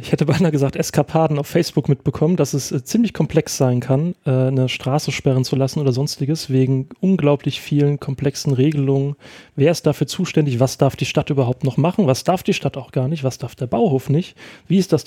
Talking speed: 215 wpm